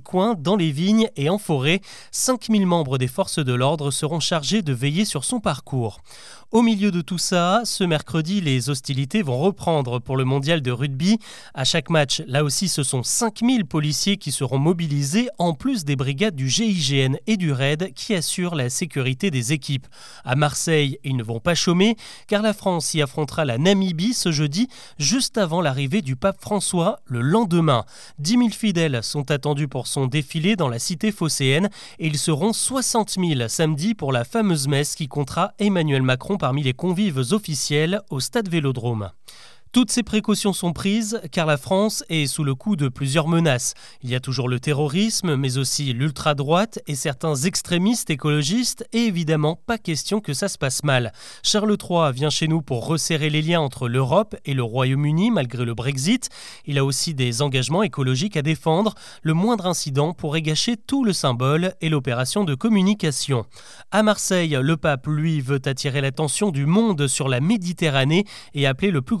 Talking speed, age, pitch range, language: 180 wpm, 30-49, 140-200 Hz, French